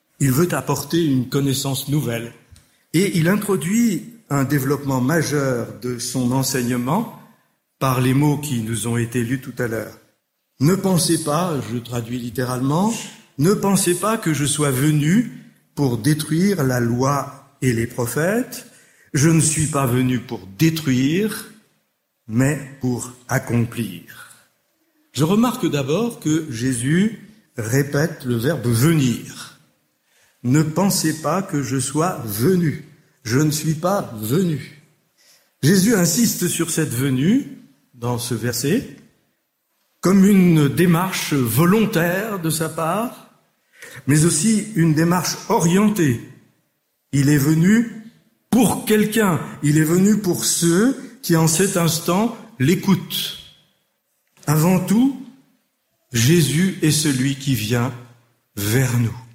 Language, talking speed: French, 120 wpm